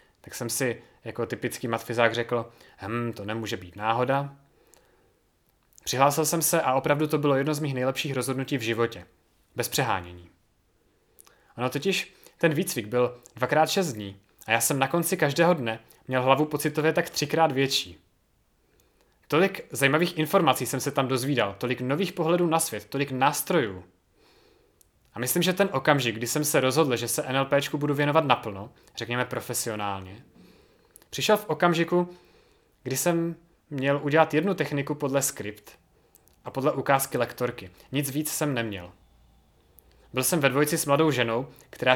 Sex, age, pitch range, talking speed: male, 30-49, 115-155 Hz, 155 wpm